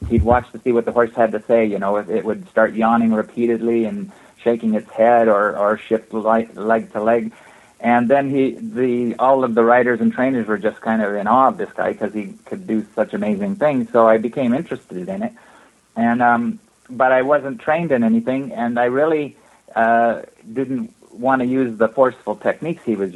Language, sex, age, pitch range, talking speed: English, male, 30-49, 110-125 Hz, 210 wpm